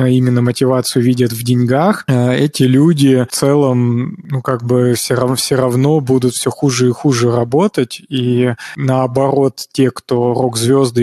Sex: male